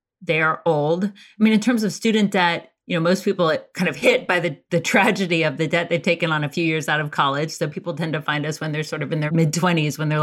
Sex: female